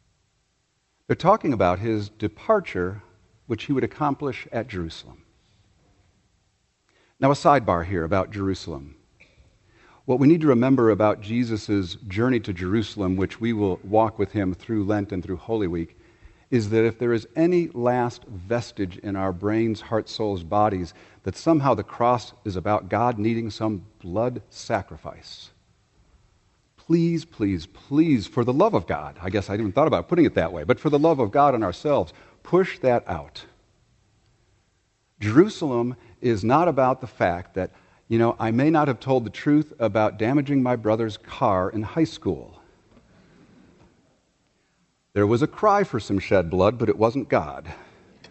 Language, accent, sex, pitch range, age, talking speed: English, American, male, 95-125 Hz, 50-69, 160 wpm